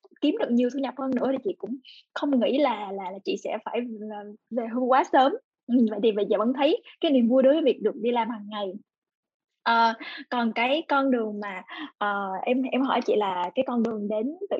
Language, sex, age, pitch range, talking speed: Vietnamese, female, 10-29, 230-295 Hz, 230 wpm